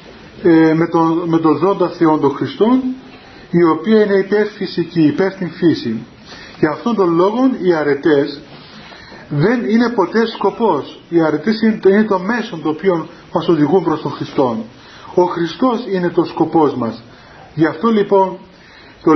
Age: 40-59